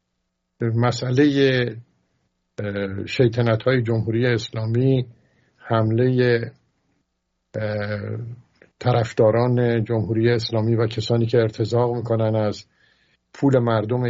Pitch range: 110-125 Hz